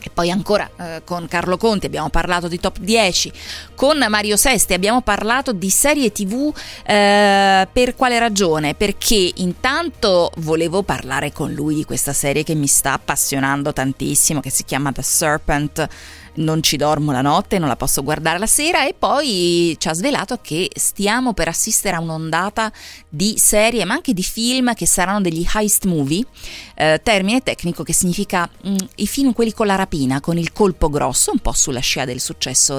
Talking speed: 180 wpm